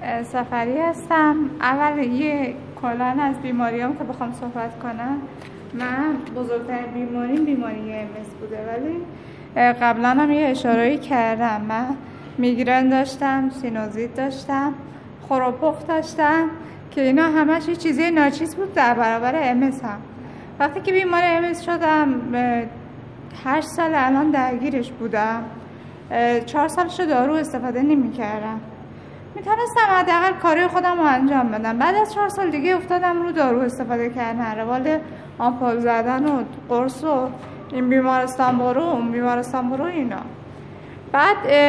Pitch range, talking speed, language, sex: 245-305 Hz, 135 wpm, Persian, female